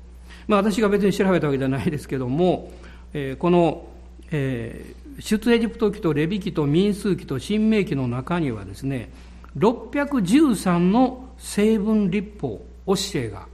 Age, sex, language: 60-79, male, Japanese